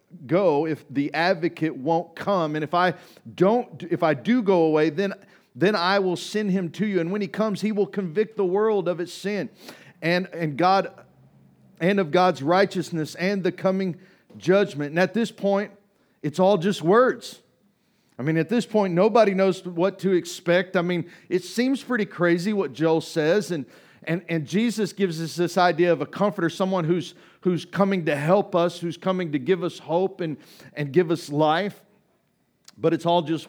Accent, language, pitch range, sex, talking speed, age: American, English, 150-185 Hz, male, 190 wpm, 50-69